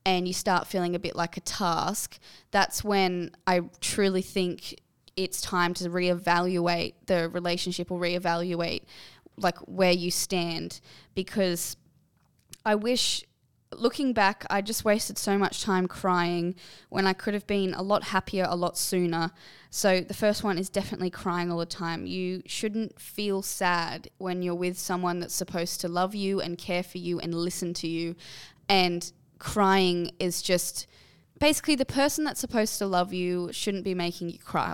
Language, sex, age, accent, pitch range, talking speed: English, female, 10-29, Australian, 175-220 Hz, 170 wpm